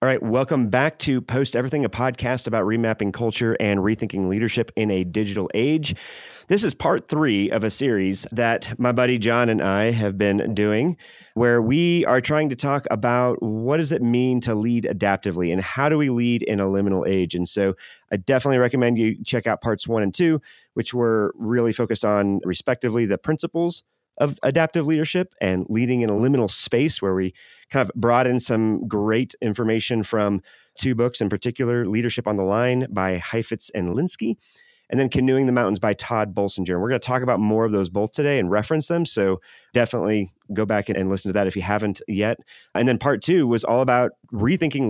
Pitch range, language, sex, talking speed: 105-130 Hz, English, male, 200 wpm